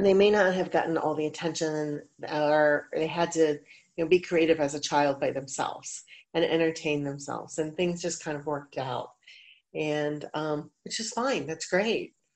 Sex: female